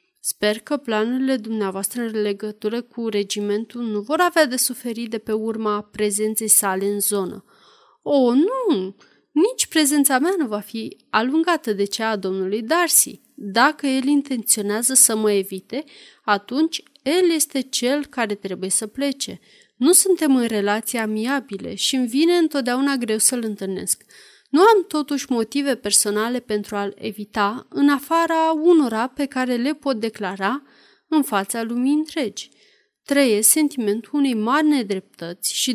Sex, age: female, 30-49